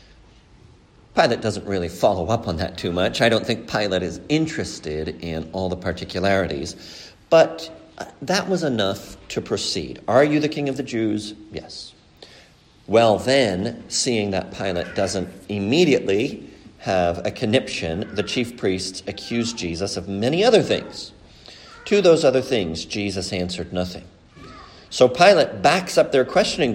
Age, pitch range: 50-69, 90-140 Hz